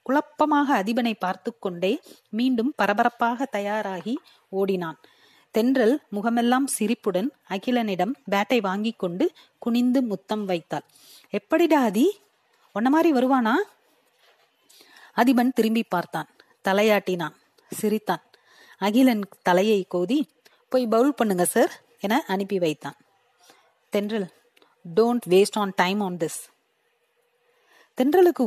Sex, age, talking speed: female, 30-49, 85 wpm